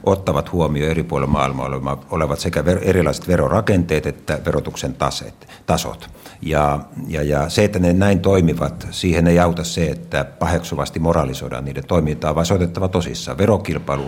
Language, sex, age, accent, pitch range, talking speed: Finnish, male, 50-69, native, 70-90 Hz, 140 wpm